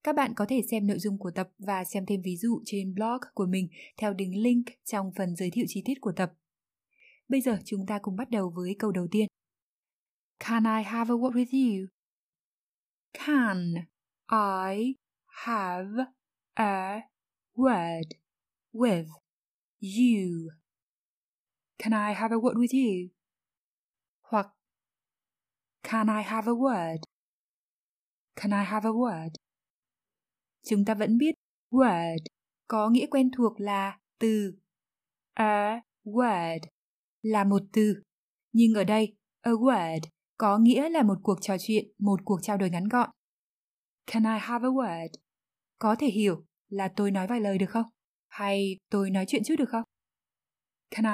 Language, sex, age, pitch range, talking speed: Vietnamese, female, 20-39, 195-235 Hz, 150 wpm